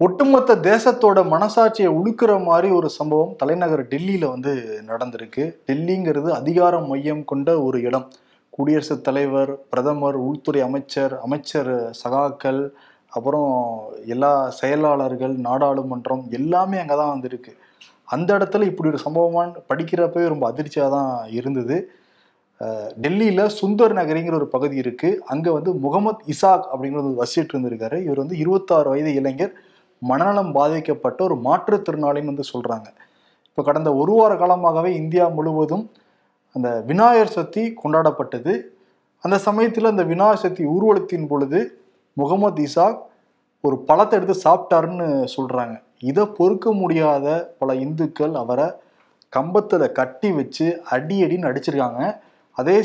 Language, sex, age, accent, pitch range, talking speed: Tamil, male, 20-39, native, 135-185 Hz, 115 wpm